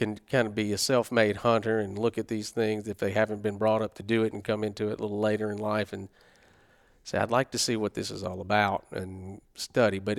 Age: 40-59